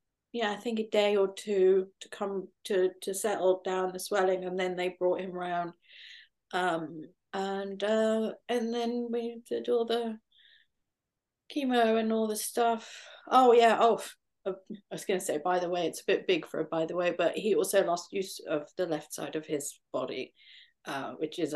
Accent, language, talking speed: British, English, 190 wpm